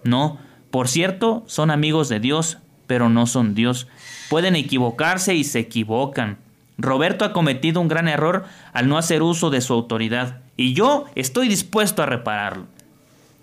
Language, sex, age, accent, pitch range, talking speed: Spanish, male, 30-49, Mexican, 125-170 Hz, 155 wpm